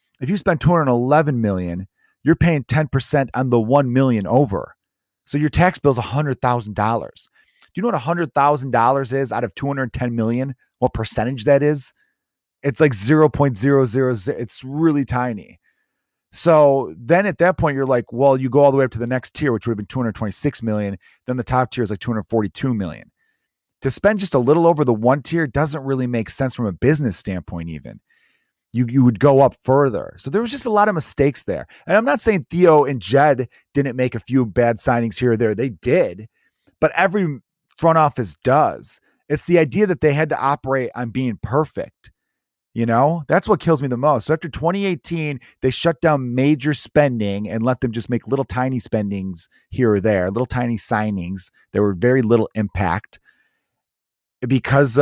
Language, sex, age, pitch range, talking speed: English, male, 30-49, 115-150 Hz, 190 wpm